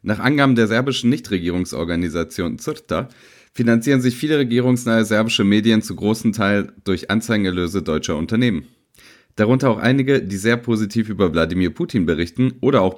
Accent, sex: German, male